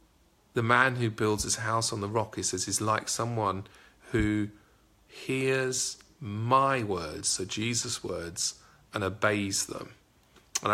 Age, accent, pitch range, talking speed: 40-59, British, 100-125 Hz, 140 wpm